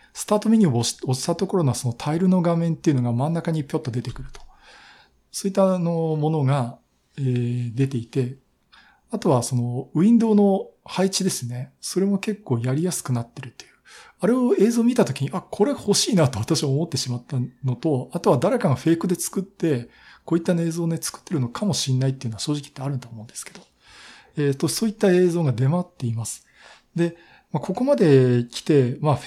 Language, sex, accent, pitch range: Japanese, male, native, 125-185 Hz